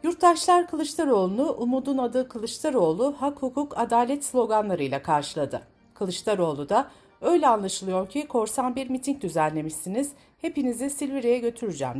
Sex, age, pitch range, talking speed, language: female, 60-79, 175-265 Hz, 110 wpm, Turkish